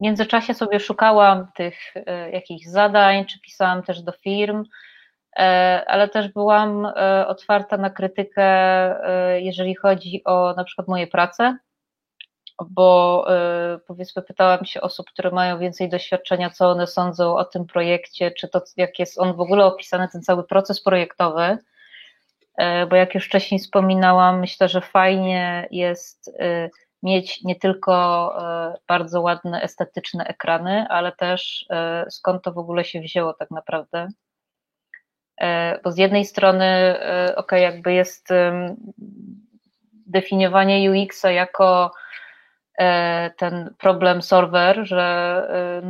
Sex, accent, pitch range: female, native, 180-195 Hz